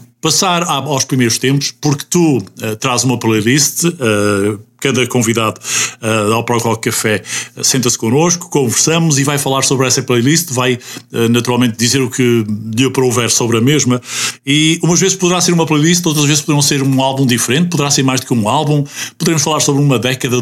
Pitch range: 115-150 Hz